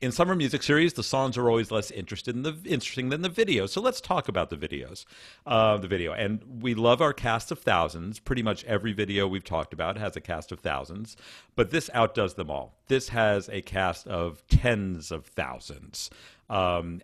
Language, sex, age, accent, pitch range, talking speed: English, male, 50-69, American, 95-120 Hz, 205 wpm